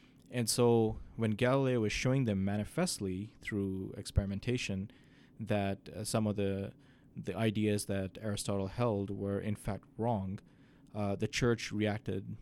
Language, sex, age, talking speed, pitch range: English, male, 20-39, 135 wpm, 100-125 Hz